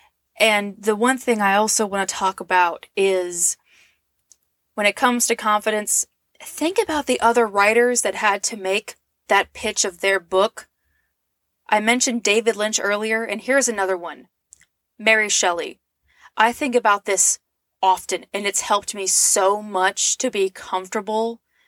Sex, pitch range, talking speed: female, 195-240 Hz, 150 wpm